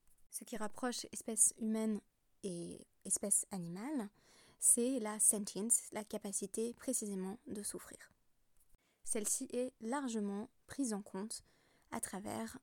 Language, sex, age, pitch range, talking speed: French, female, 20-39, 205-245 Hz, 115 wpm